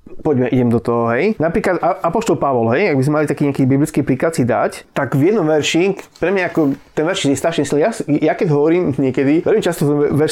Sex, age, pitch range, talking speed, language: male, 20-39, 130-160 Hz, 235 wpm, English